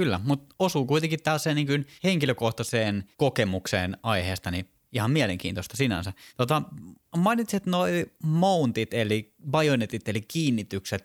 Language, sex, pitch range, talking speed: Finnish, male, 95-130 Hz, 115 wpm